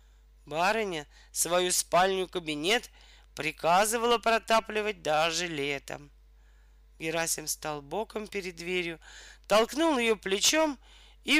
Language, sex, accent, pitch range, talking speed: Russian, male, native, 165-225 Hz, 85 wpm